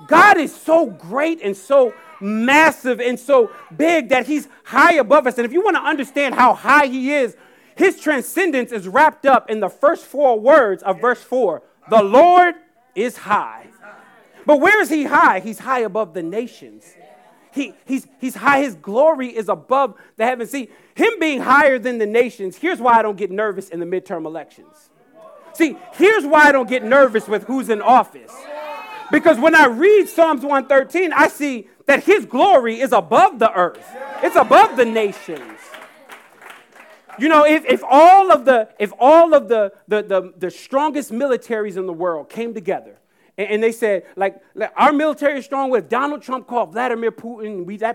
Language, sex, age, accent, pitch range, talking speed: English, male, 40-59, American, 220-305 Hz, 185 wpm